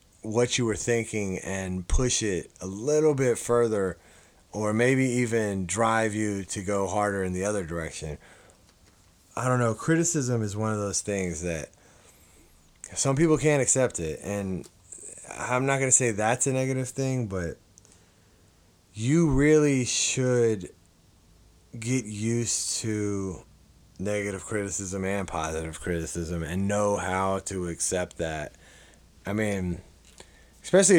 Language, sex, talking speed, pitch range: English, male, 135 wpm, 90-120 Hz